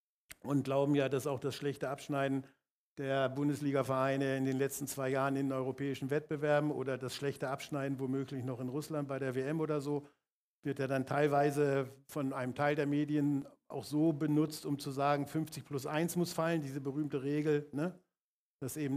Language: German